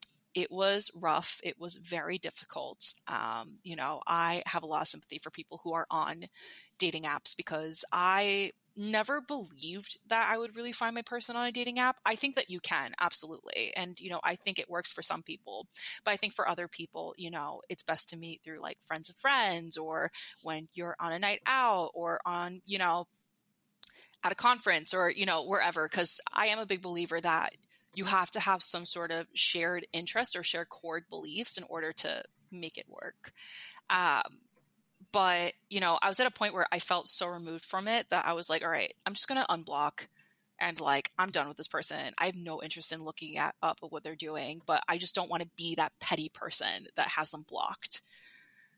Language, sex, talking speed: English, female, 215 wpm